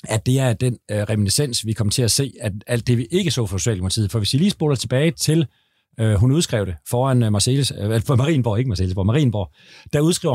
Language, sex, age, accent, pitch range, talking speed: Danish, male, 40-59, native, 115-160 Hz, 225 wpm